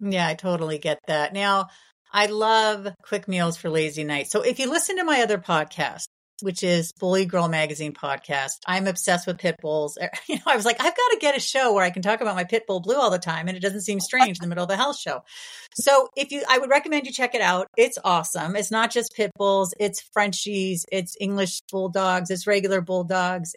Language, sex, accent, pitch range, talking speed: English, female, American, 180-250 Hz, 235 wpm